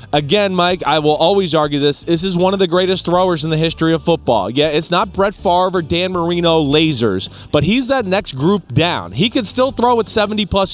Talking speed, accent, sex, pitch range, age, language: 230 wpm, American, male, 150-190 Hz, 20-39, English